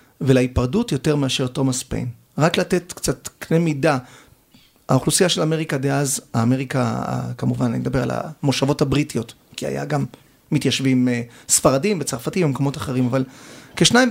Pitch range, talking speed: 135-175 Hz, 130 wpm